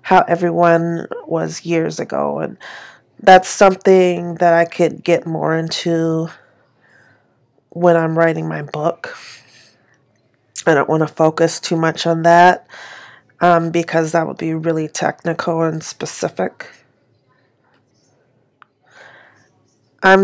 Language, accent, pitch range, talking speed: English, American, 165-185 Hz, 115 wpm